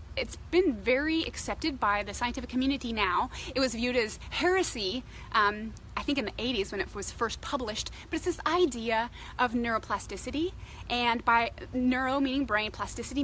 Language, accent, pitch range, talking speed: English, American, 235-310 Hz, 170 wpm